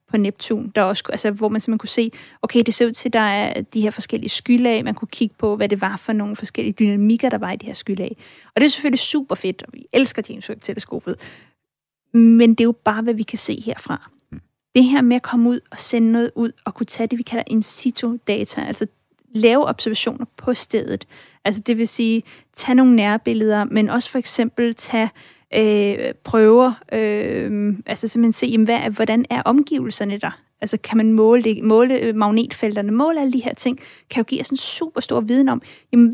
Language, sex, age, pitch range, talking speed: Danish, female, 30-49, 220-250 Hz, 215 wpm